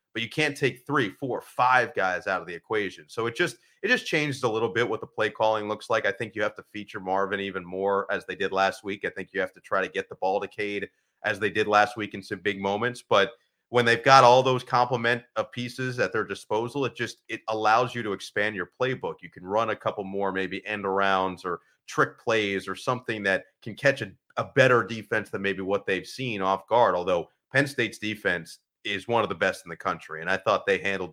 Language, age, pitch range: English, 30-49, 100-120 Hz